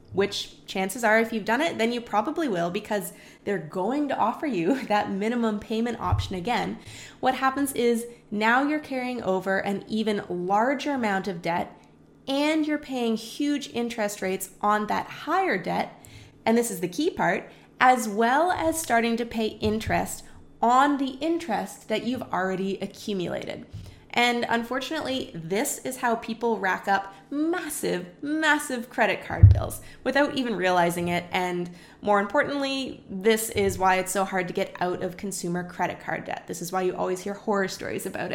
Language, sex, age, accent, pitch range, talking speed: English, female, 20-39, American, 190-255 Hz, 170 wpm